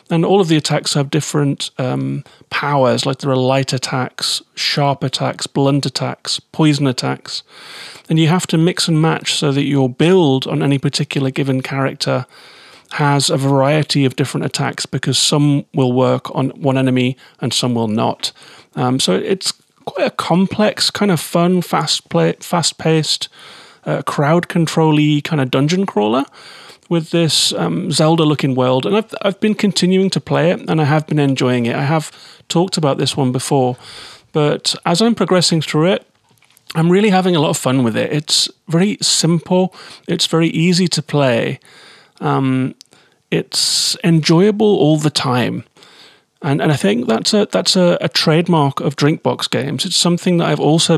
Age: 30-49